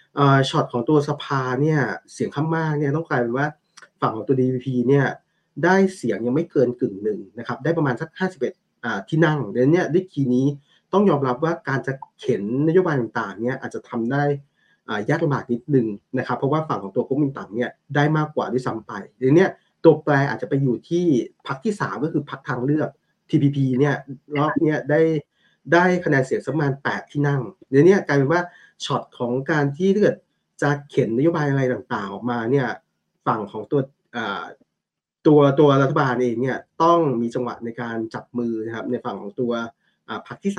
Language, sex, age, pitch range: Thai, male, 20-39, 125-150 Hz